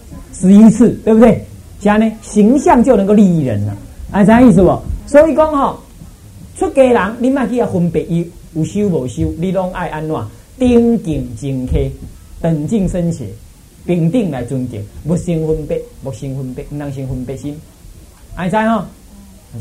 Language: Chinese